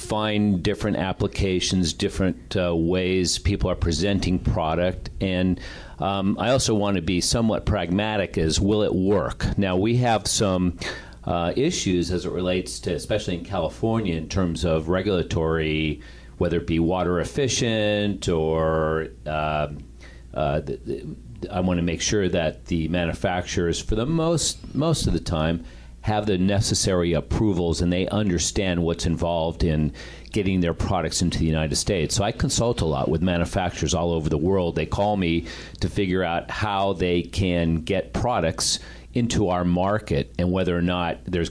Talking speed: 160 wpm